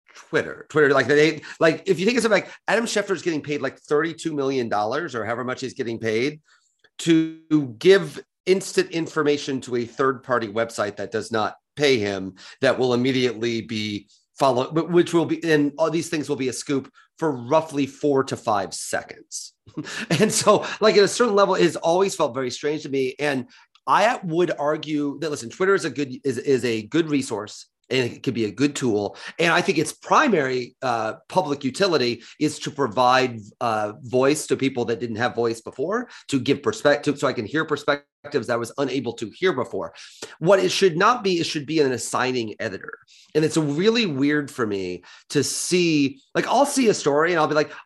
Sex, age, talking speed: male, 30-49, 200 wpm